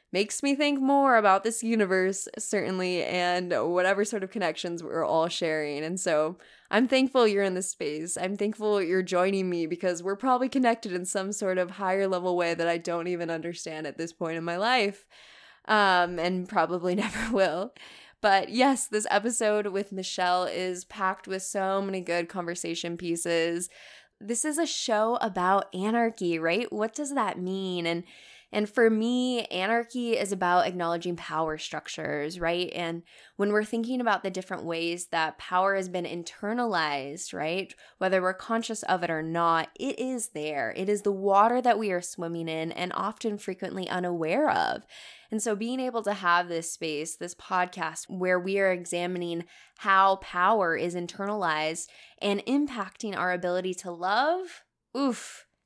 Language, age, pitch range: English, 20-39, 170-215 Hz